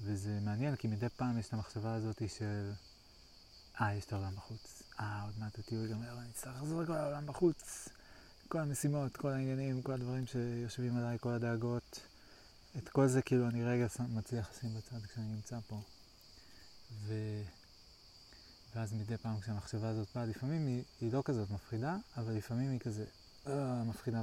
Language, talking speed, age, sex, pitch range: Hebrew, 165 wpm, 20-39, male, 110-125 Hz